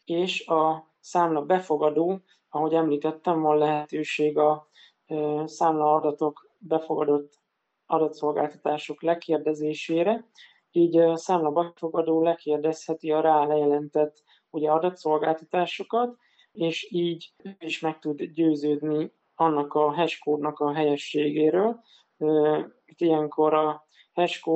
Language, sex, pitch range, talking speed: Hungarian, male, 150-165 Hz, 95 wpm